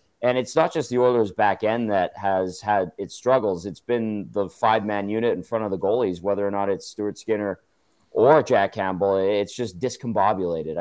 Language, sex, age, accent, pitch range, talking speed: English, male, 30-49, American, 100-120 Hz, 200 wpm